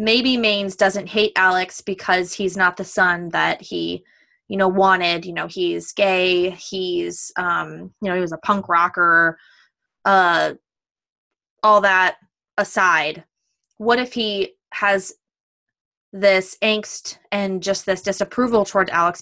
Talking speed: 135 wpm